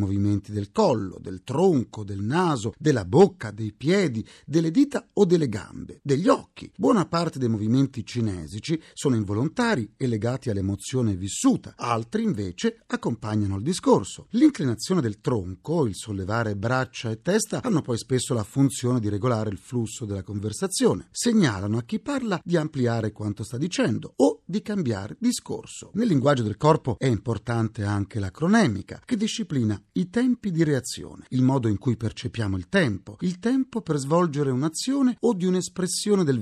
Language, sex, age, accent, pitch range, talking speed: Italian, male, 40-59, native, 110-180 Hz, 160 wpm